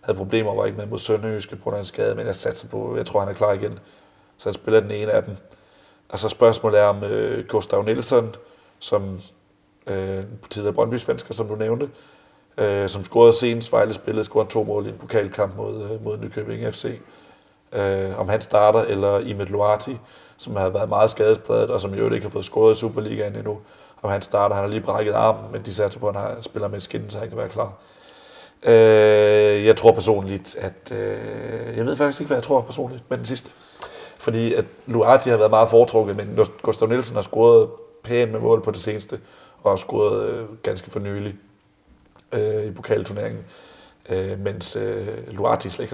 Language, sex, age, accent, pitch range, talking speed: Danish, male, 30-49, native, 100-120 Hz, 215 wpm